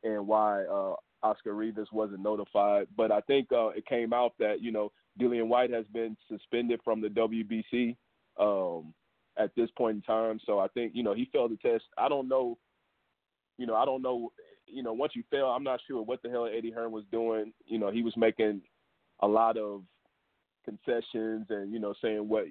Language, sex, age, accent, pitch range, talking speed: English, male, 30-49, American, 110-125 Hz, 205 wpm